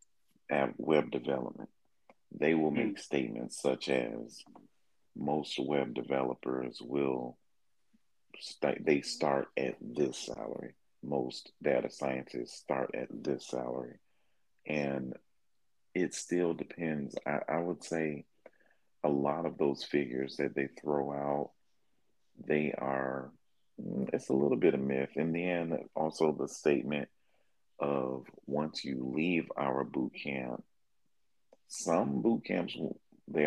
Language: English